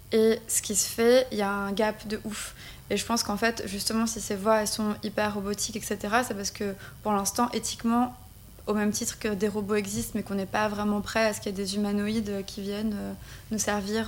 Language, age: French, 20-39